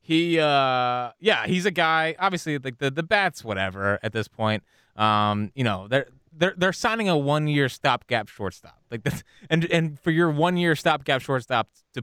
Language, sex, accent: English, male, American